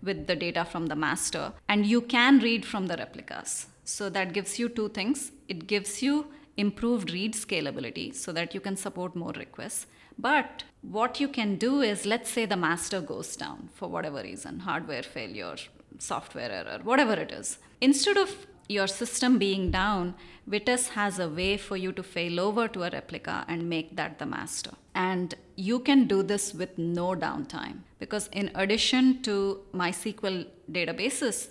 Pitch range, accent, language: 175-225 Hz, Indian, English